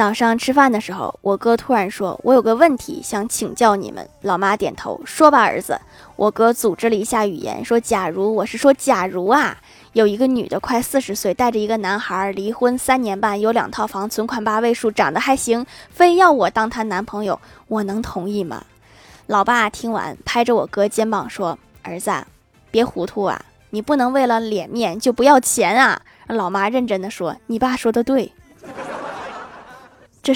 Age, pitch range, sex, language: 20-39, 200-250 Hz, female, Chinese